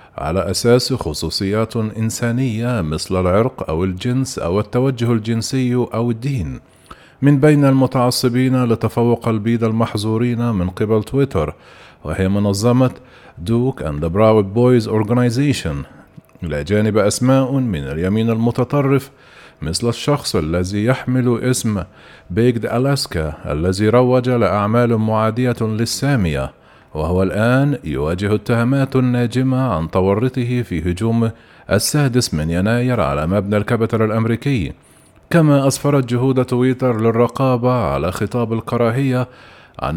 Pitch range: 105-130 Hz